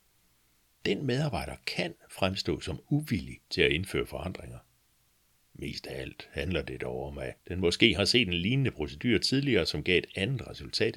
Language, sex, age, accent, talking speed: Danish, male, 60-79, native, 170 wpm